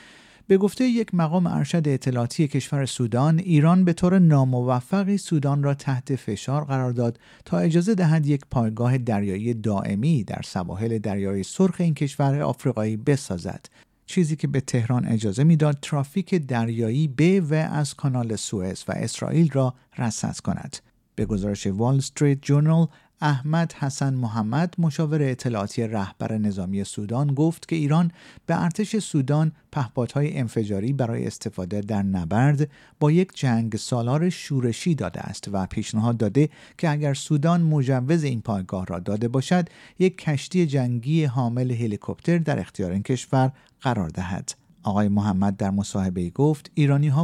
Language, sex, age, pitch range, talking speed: Persian, male, 50-69, 110-155 Hz, 145 wpm